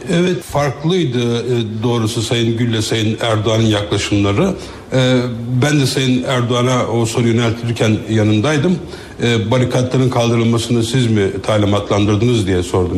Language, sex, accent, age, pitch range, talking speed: Turkish, male, native, 60-79, 115-140 Hz, 105 wpm